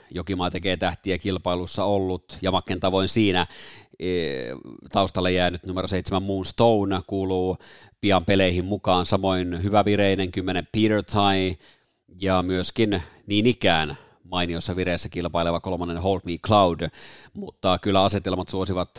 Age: 30-49